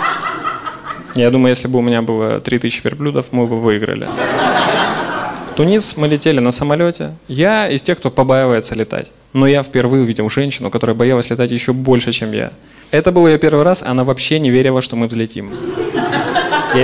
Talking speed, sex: 175 wpm, male